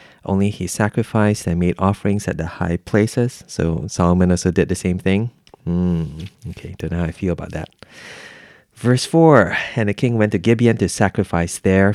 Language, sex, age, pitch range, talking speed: English, male, 20-39, 90-110 Hz, 185 wpm